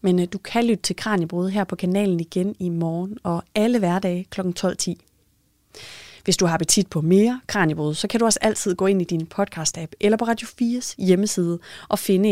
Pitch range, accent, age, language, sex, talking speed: 170-210 Hz, native, 30-49, Danish, female, 200 wpm